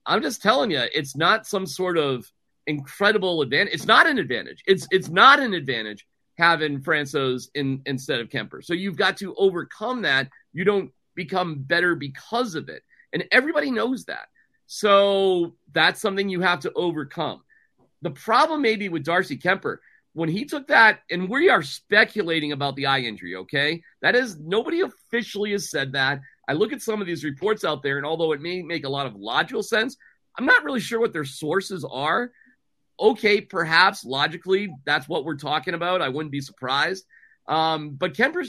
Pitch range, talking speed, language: 150-200 Hz, 185 wpm, English